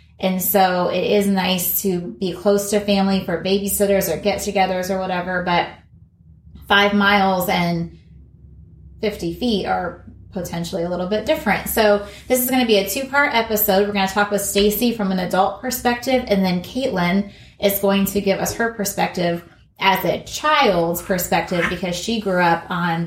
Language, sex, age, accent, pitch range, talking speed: English, female, 20-39, American, 175-210 Hz, 170 wpm